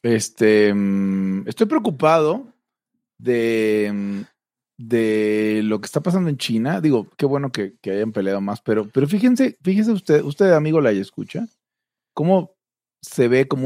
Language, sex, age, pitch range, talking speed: Spanish, male, 40-59, 100-150 Hz, 140 wpm